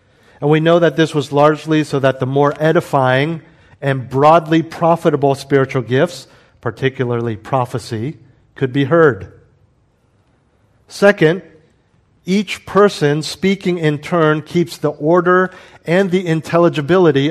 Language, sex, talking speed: English, male, 120 wpm